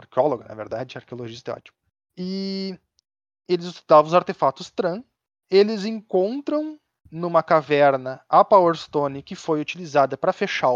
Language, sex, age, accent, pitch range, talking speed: Portuguese, male, 20-39, Brazilian, 140-185 Hz, 135 wpm